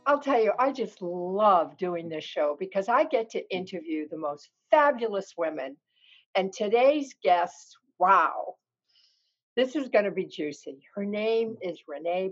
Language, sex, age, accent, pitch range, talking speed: English, female, 60-79, American, 165-230 Hz, 155 wpm